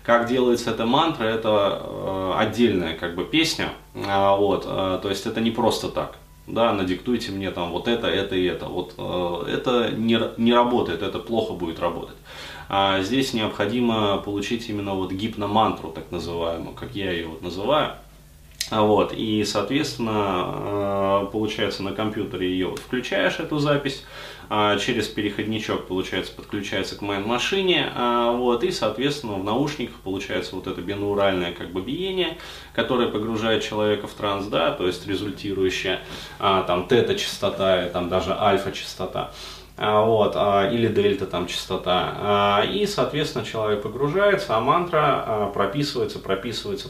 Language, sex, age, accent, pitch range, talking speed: Russian, male, 20-39, native, 95-120 Hz, 135 wpm